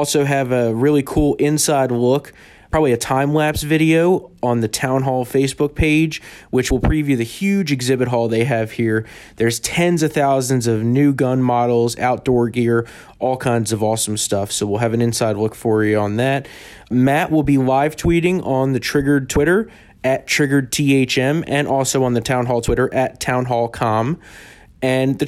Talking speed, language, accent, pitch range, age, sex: 180 wpm, English, American, 120-150 Hz, 20-39, male